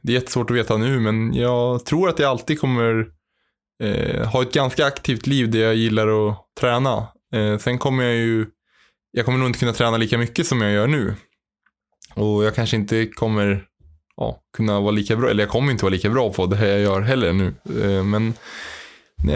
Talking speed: 210 wpm